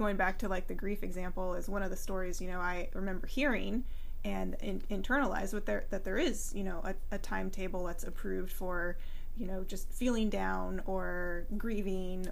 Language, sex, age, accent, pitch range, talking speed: English, female, 20-39, American, 185-230 Hz, 180 wpm